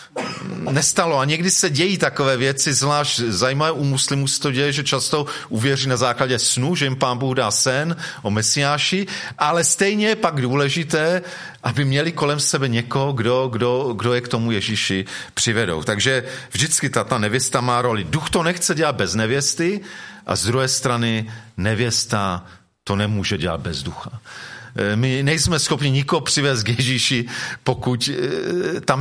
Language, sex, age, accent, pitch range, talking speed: Czech, male, 40-59, native, 115-150 Hz, 160 wpm